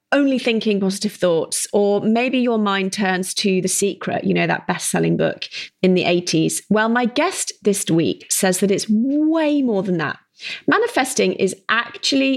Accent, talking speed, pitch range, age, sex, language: British, 170 wpm, 180-230 Hz, 30-49, female, English